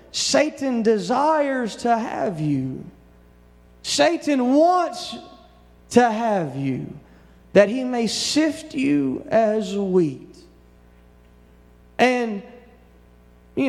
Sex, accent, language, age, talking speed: male, American, English, 30-49, 85 wpm